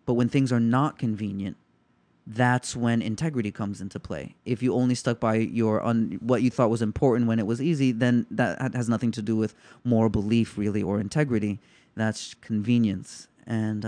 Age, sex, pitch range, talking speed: 30-49, male, 110-125 Hz, 185 wpm